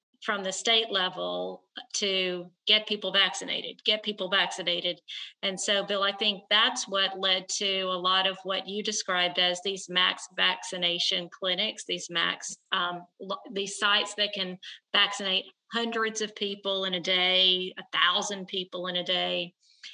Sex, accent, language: female, American, English